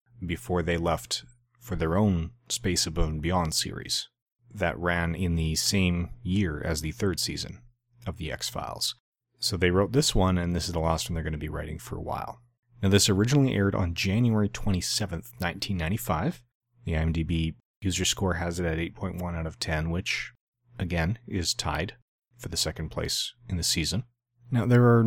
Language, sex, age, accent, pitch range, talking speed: English, male, 30-49, American, 85-115 Hz, 180 wpm